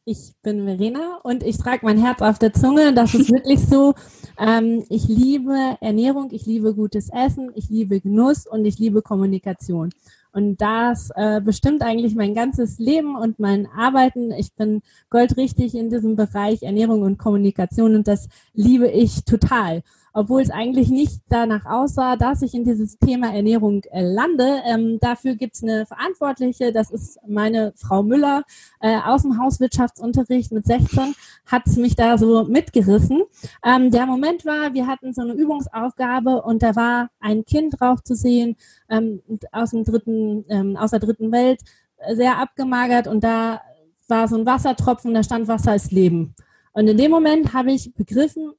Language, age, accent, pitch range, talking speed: German, 30-49, German, 215-255 Hz, 165 wpm